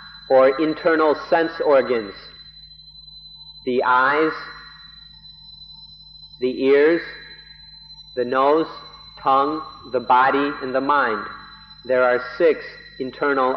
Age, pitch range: 50-69, 130-155 Hz